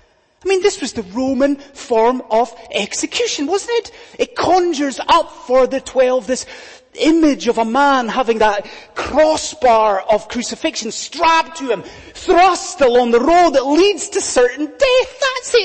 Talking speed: 155 wpm